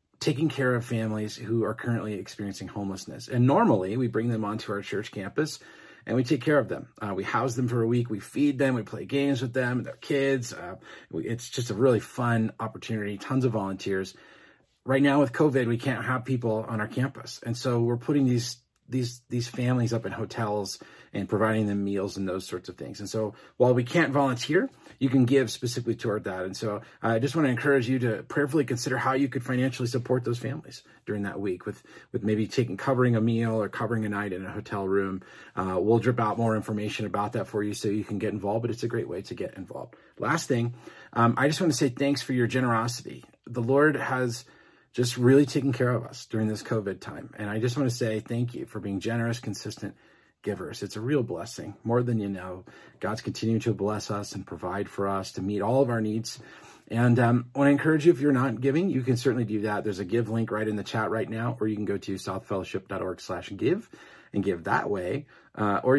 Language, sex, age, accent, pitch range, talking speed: English, male, 40-59, American, 105-130 Hz, 230 wpm